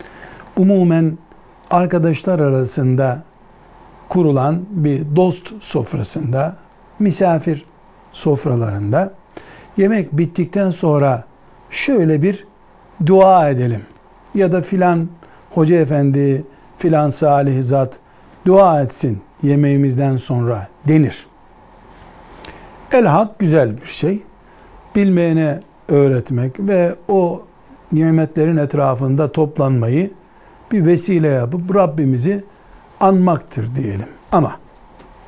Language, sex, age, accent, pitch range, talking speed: Turkish, male, 60-79, native, 135-175 Hz, 80 wpm